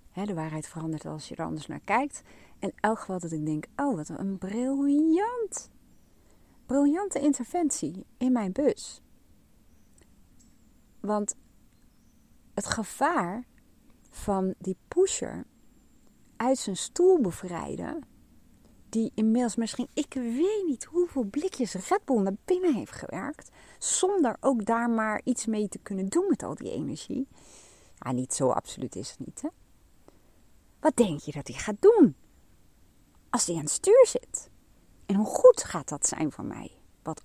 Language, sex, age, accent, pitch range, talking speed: Dutch, female, 40-59, Dutch, 185-290 Hz, 145 wpm